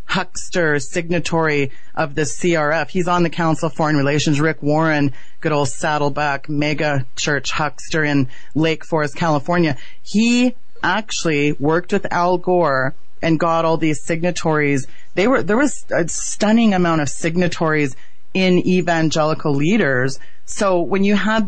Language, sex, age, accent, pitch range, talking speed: English, female, 30-49, American, 150-180 Hz, 140 wpm